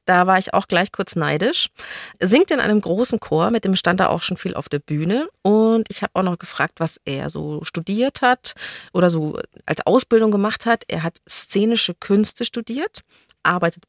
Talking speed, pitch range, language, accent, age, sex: 195 wpm, 170-210 Hz, German, German, 40-59, female